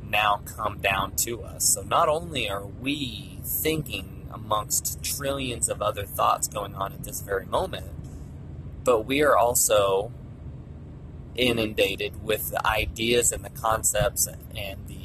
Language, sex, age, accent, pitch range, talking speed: English, male, 30-49, American, 100-130 Hz, 145 wpm